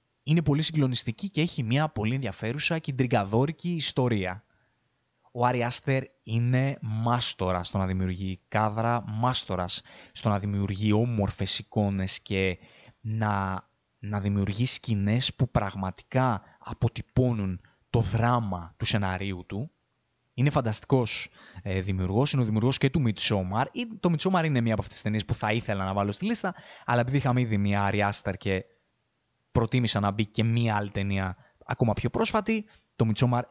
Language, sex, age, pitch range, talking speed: Greek, male, 20-39, 100-125 Hz, 150 wpm